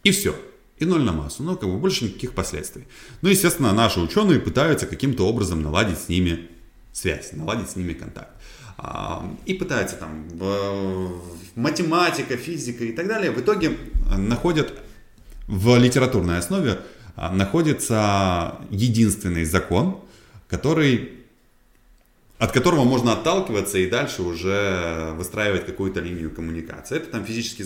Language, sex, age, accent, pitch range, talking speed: Russian, male, 20-39, native, 90-130 Hz, 130 wpm